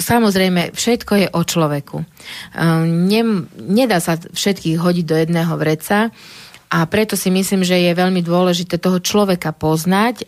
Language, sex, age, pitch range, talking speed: Slovak, female, 30-49, 165-190 Hz, 145 wpm